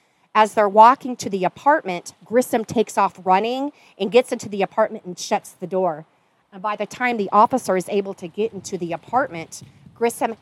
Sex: female